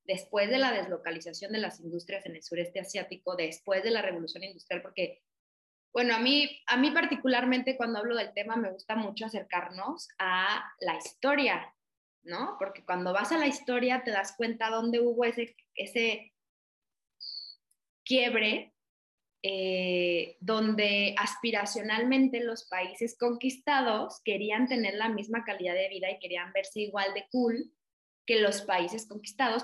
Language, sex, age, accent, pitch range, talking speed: Spanish, female, 20-39, Mexican, 190-240 Hz, 145 wpm